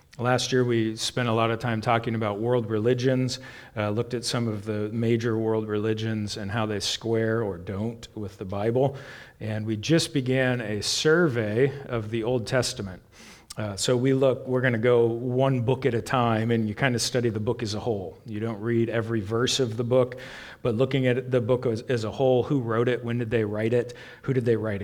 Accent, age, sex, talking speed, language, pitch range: American, 40-59, male, 220 wpm, English, 110-125 Hz